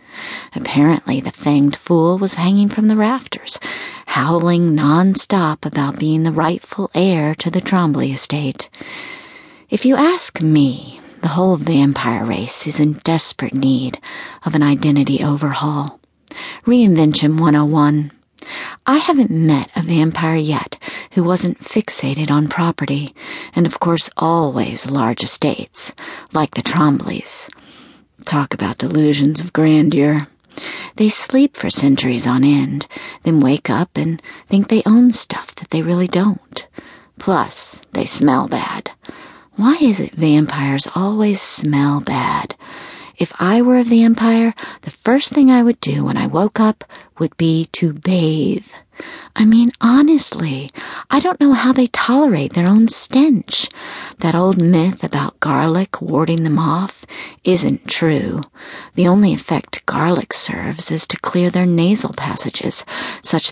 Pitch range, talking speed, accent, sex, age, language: 150-215 Hz, 140 wpm, American, female, 40-59, English